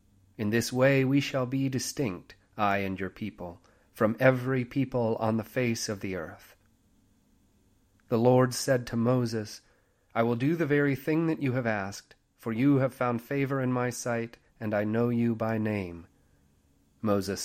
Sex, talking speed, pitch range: male, 170 wpm, 100-130 Hz